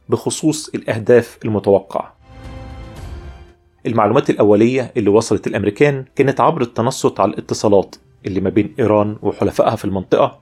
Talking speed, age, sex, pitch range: 115 wpm, 30-49, male, 100-130 Hz